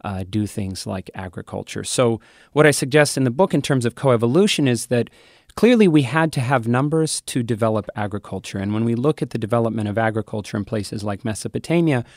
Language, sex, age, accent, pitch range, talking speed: English, male, 30-49, American, 105-130 Hz, 195 wpm